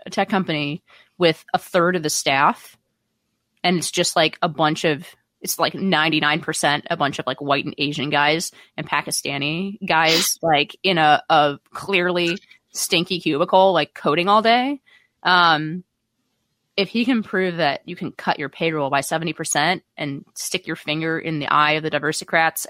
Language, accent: English, American